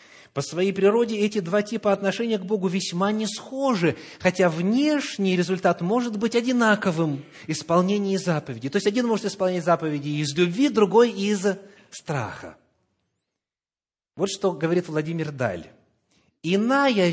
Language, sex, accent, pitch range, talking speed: Russian, male, native, 150-205 Hz, 135 wpm